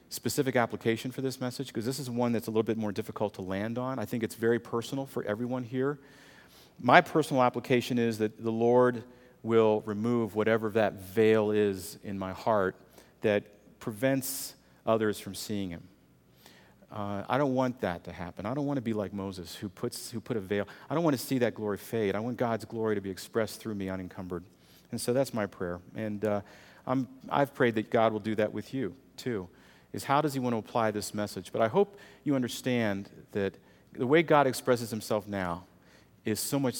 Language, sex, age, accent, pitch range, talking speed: English, male, 40-59, American, 95-125 Hz, 205 wpm